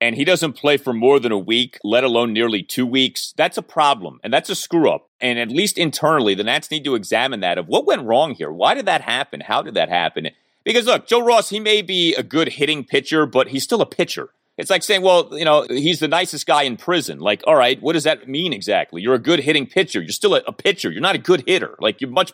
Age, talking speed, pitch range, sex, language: 30-49, 260 wpm, 140-195 Hz, male, English